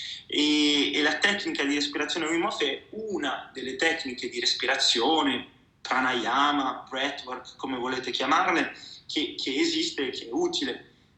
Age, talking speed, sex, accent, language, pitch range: 20-39, 140 wpm, male, native, Italian, 135-180 Hz